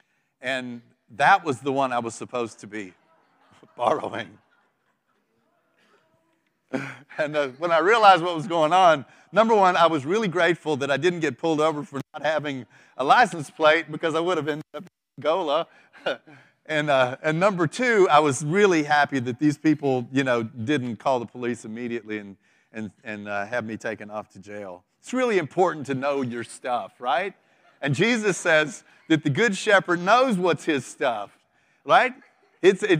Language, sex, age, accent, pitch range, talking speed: English, male, 40-59, American, 130-185 Hz, 175 wpm